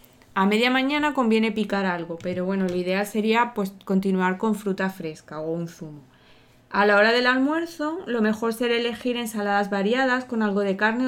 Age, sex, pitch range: 20-39, female, 190-225 Hz